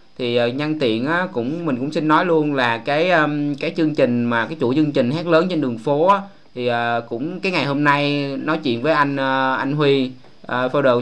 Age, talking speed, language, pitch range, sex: 20-39, 200 wpm, Vietnamese, 120-160 Hz, male